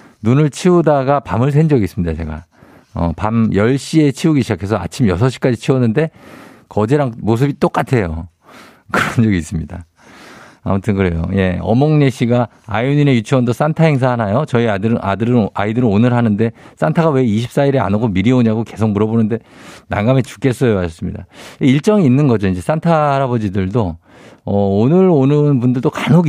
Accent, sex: native, male